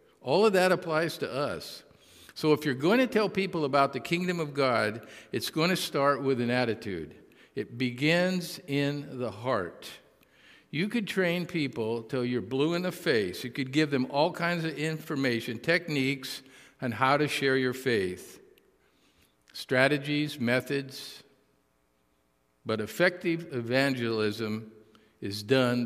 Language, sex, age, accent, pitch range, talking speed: English, male, 50-69, American, 115-155 Hz, 145 wpm